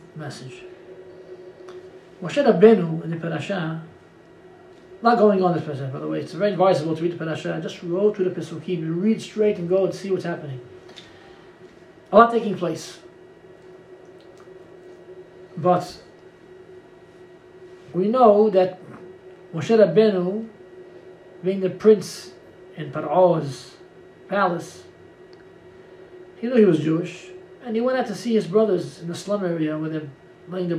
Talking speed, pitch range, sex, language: 140 wpm, 180-230 Hz, male, English